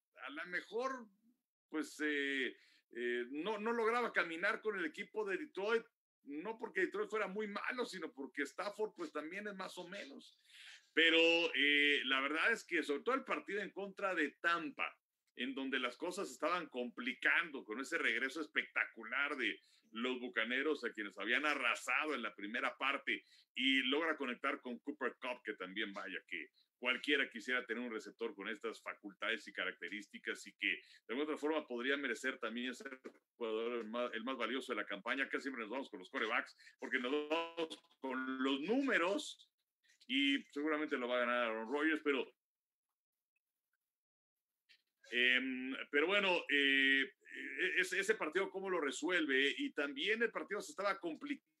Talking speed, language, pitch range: 165 wpm, Spanish, 135-225 Hz